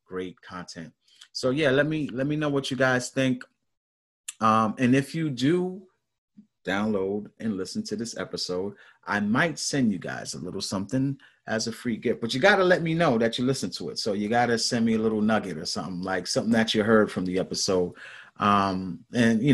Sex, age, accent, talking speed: male, 30-49, American, 210 wpm